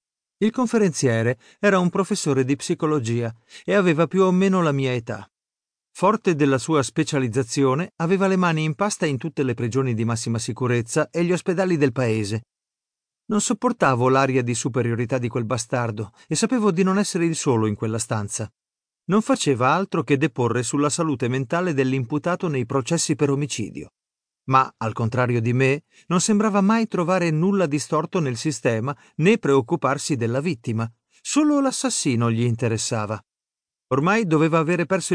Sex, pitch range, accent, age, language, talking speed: male, 120-185 Hz, native, 50-69, Italian, 155 wpm